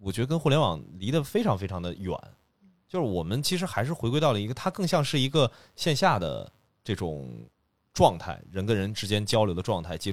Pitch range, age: 95-140 Hz, 30-49